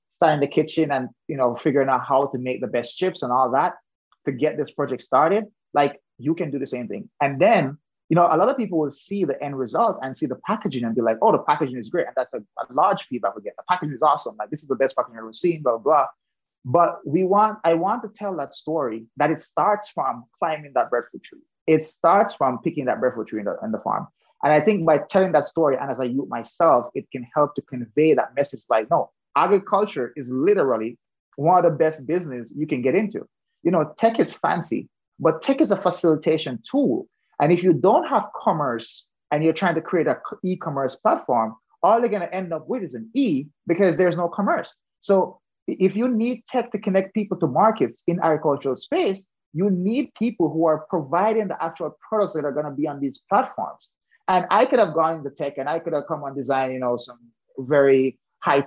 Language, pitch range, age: English, 140-195 Hz, 30-49